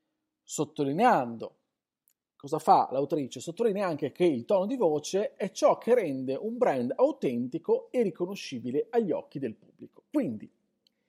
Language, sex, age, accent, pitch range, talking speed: Italian, male, 40-59, native, 155-245 Hz, 135 wpm